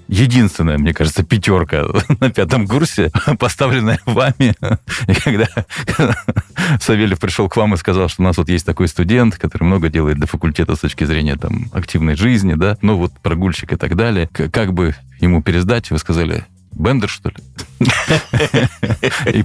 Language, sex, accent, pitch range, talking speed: Russian, male, native, 85-115 Hz, 165 wpm